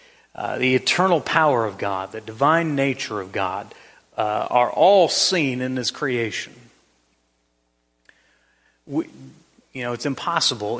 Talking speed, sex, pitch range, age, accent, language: 130 wpm, male, 100-135 Hz, 40-59, American, English